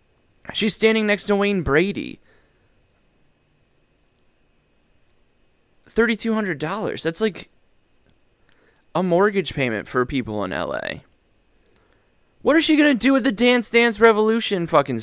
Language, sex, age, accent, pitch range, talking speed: English, male, 20-39, American, 115-190 Hz, 120 wpm